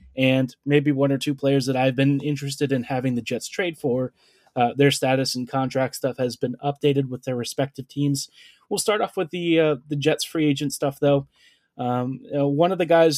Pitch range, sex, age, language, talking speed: 135-150 Hz, male, 20-39, English, 210 wpm